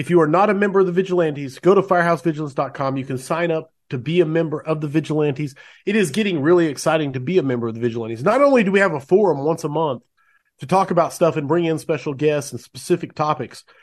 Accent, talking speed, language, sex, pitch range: American, 245 wpm, English, male, 145-195 Hz